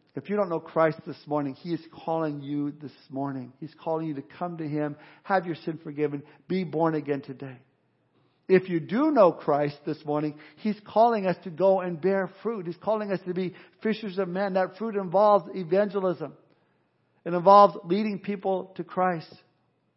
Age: 50-69